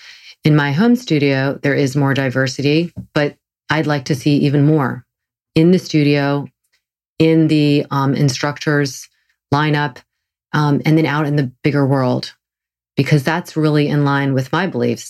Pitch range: 130-155 Hz